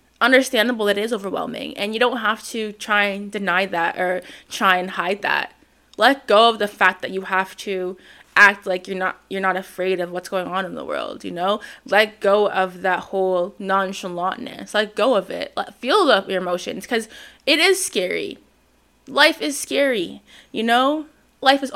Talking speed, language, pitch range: 190 wpm, English, 195-240 Hz